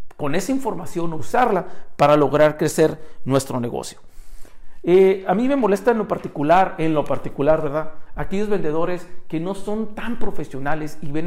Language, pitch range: Spanish, 155-210 Hz